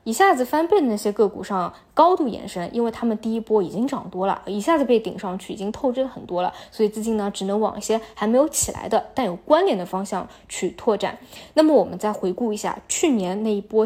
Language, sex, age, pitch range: Chinese, female, 20-39, 200-250 Hz